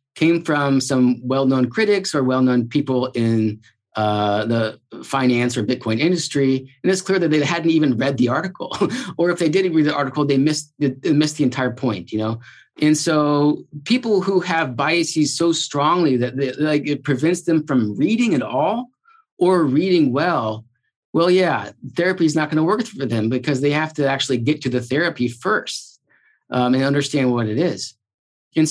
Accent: American